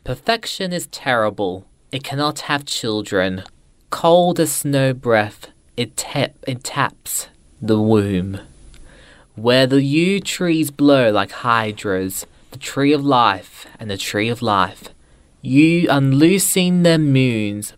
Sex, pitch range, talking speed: male, 105-140 Hz, 125 wpm